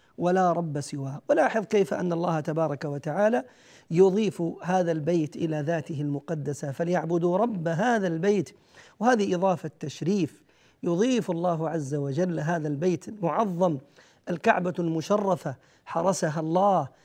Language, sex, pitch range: Arabic, male, 160-195 Hz